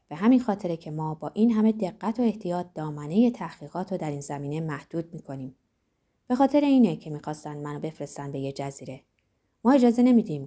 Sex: female